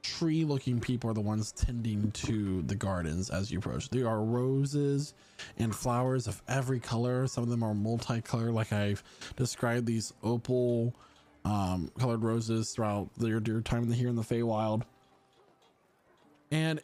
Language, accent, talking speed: English, American, 155 wpm